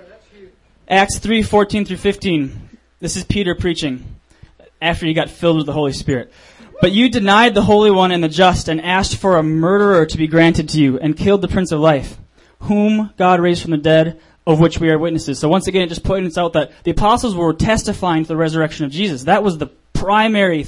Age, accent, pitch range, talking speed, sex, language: 20-39, American, 155-195 Hz, 215 wpm, male, English